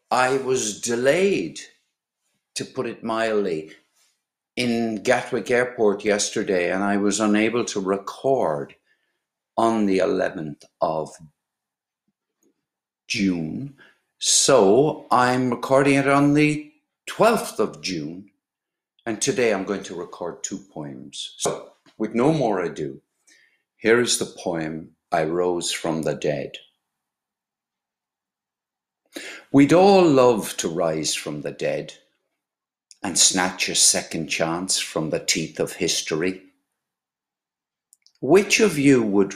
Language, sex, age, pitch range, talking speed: English, male, 60-79, 95-125 Hz, 115 wpm